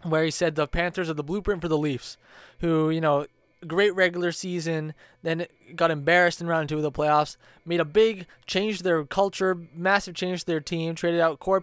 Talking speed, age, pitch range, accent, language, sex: 210 wpm, 20-39, 145-180 Hz, American, English, male